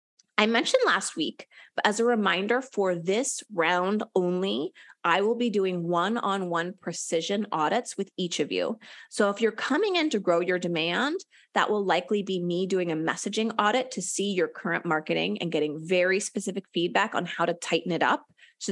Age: 30-49